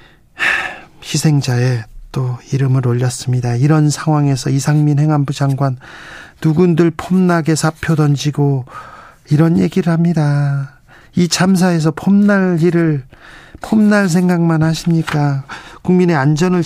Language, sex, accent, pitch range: Korean, male, native, 130-160 Hz